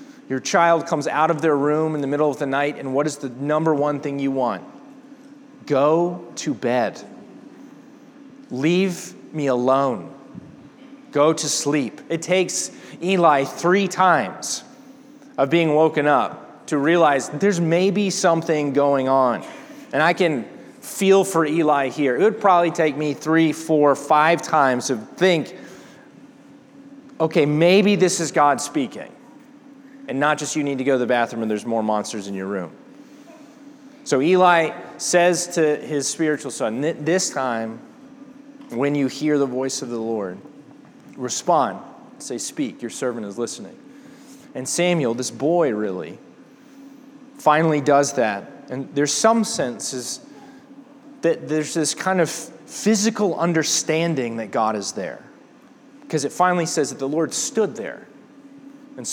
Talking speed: 145 wpm